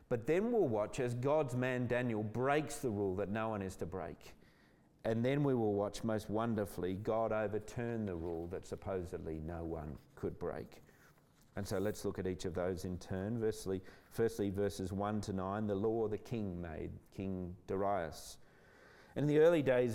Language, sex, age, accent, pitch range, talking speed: English, male, 40-59, Australian, 105-135 Hz, 185 wpm